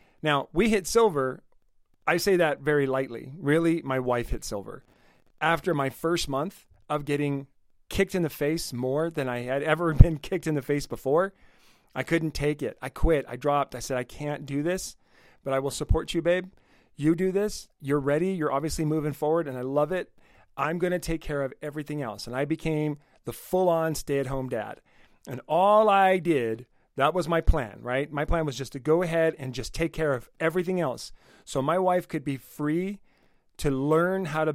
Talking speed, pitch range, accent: 200 wpm, 135-170 Hz, American